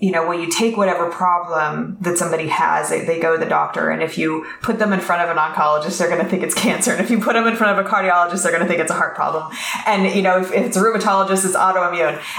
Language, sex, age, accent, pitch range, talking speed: English, female, 20-39, American, 165-195 Hz, 290 wpm